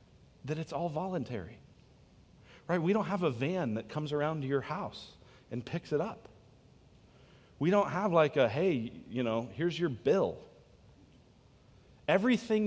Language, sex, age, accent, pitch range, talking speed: English, male, 40-59, American, 130-200 Hz, 150 wpm